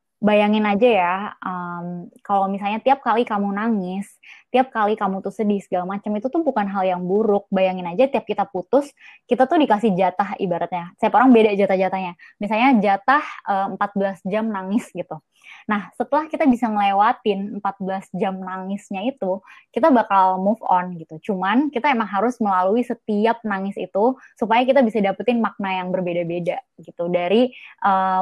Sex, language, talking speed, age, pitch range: female, Indonesian, 160 wpm, 20-39, 190-240 Hz